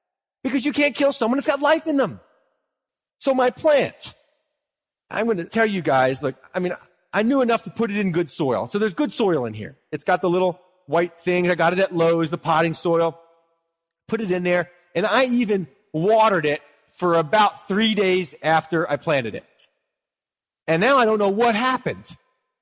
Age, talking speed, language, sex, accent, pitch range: 40-59, 195 wpm, English, male, American, 165-260 Hz